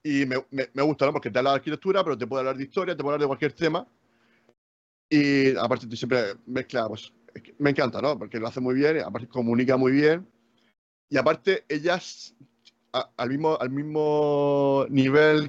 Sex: male